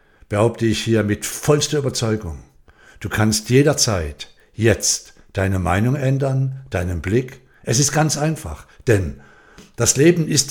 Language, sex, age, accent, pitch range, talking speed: German, male, 60-79, German, 100-145 Hz, 130 wpm